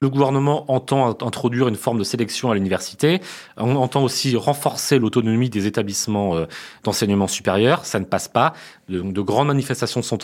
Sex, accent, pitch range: male, French, 100-135 Hz